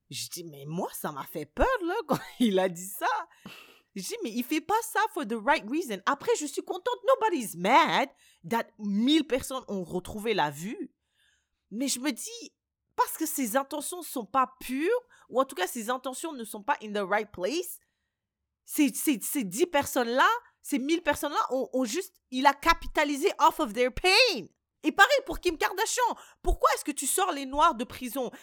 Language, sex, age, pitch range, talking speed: French, female, 30-49, 245-340 Hz, 200 wpm